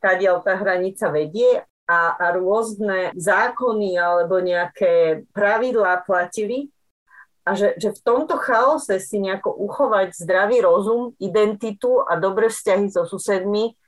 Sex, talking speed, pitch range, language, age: female, 125 wpm, 185-235 Hz, Slovak, 40-59